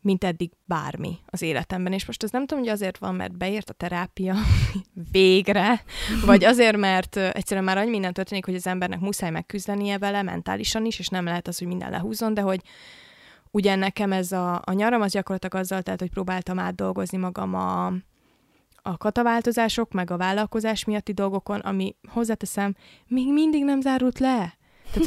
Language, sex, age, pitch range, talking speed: Hungarian, female, 20-39, 185-220 Hz, 175 wpm